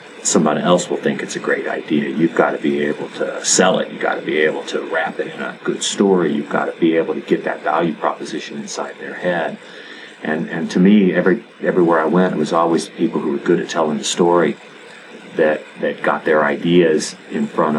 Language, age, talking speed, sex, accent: English, 40-59, 225 wpm, male, American